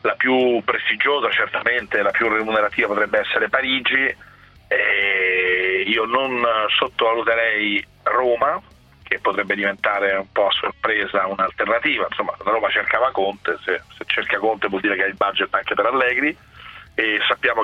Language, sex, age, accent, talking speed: Italian, male, 40-59, native, 145 wpm